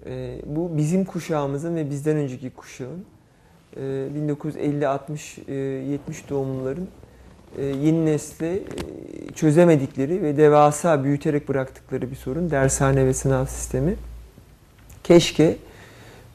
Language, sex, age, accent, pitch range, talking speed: Turkish, male, 40-59, native, 135-155 Hz, 90 wpm